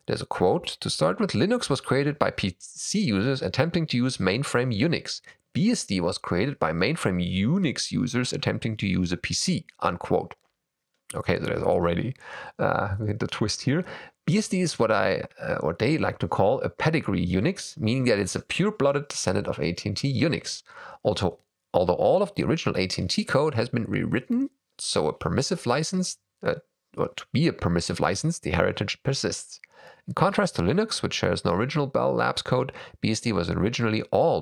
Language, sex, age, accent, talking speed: English, male, 30-49, German, 175 wpm